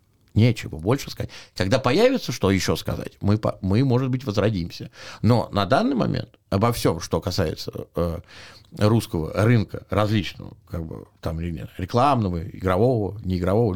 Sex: male